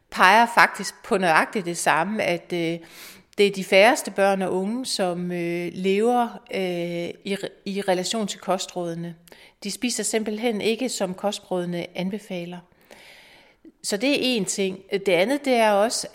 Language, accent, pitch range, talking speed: Danish, native, 185-225 Hz, 140 wpm